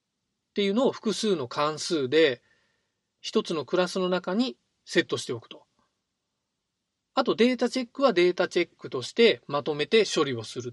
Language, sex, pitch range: Japanese, male, 145-225 Hz